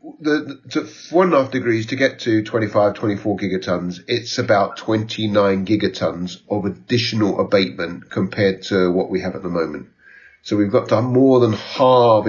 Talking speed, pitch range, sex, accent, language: 175 wpm, 95-110 Hz, male, British, English